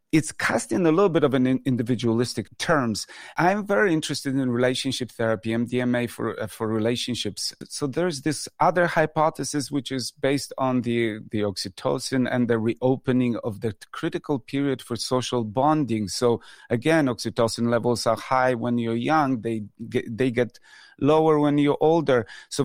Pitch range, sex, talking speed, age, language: 115-140 Hz, male, 160 wpm, 40-59, English